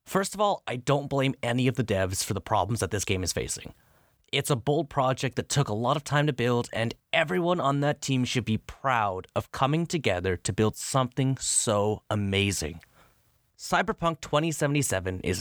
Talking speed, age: 190 wpm, 30-49